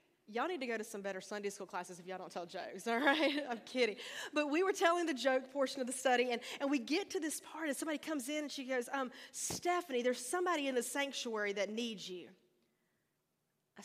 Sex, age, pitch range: female, 30-49, 215-290 Hz